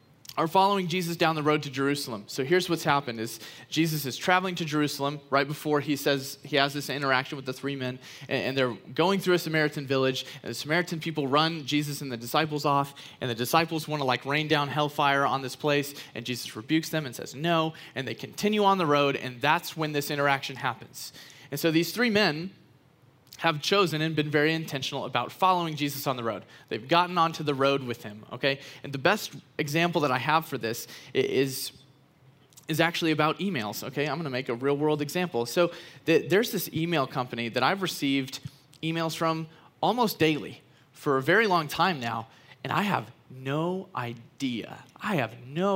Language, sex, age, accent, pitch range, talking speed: English, male, 30-49, American, 135-165 Hz, 200 wpm